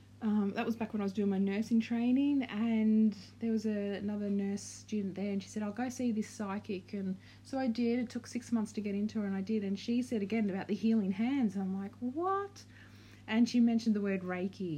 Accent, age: Australian, 30-49